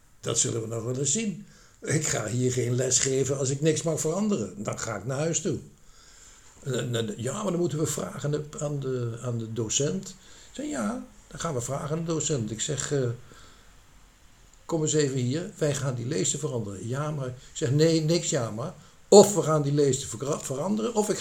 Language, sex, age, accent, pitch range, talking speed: Dutch, male, 60-79, Dutch, 115-155 Hz, 200 wpm